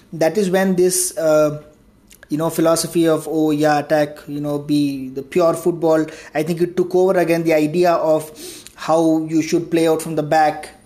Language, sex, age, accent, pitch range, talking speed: English, male, 20-39, Indian, 160-180 Hz, 200 wpm